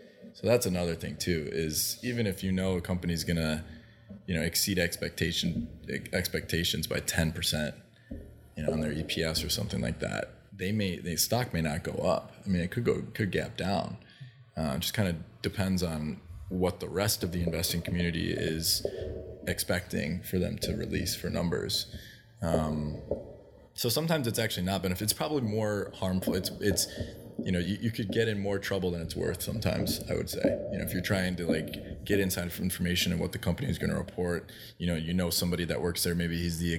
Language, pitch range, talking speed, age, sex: English, 85-105 Hz, 205 wpm, 20-39, male